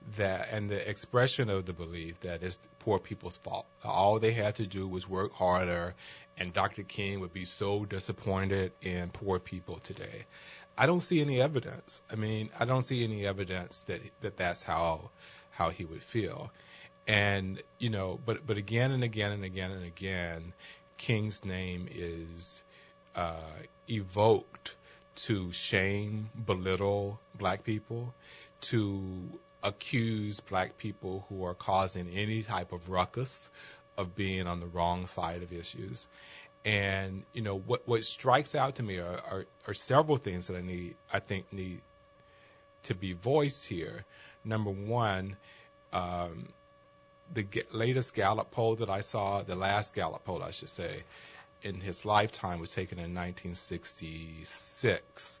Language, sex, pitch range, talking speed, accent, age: English, male, 90-115 Hz, 155 wpm, American, 40-59